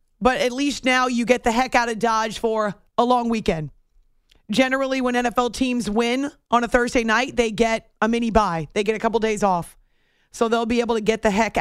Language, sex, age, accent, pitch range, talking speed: English, female, 30-49, American, 210-250 Hz, 220 wpm